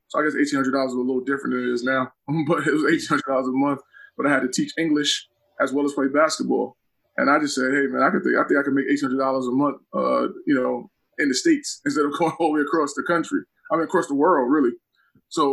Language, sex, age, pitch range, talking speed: English, male, 20-39, 140-175 Hz, 260 wpm